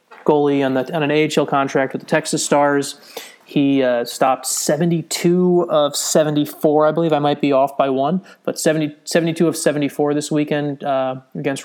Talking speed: 175 wpm